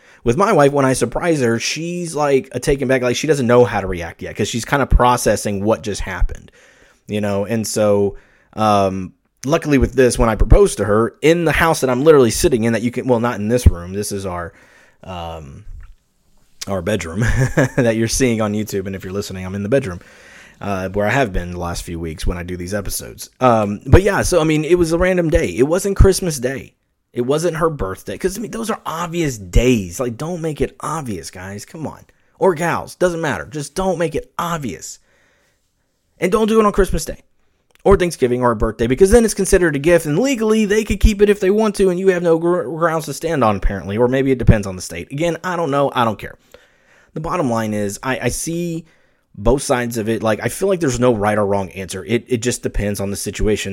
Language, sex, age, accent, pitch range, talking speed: English, male, 30-49, American, 100-155 Hz, 235 wpm